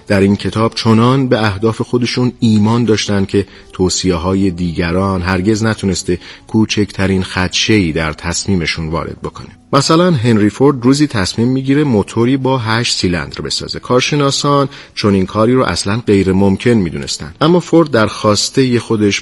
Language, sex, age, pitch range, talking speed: Persian, male, 40-59, 95-120 Hz, 145 wpm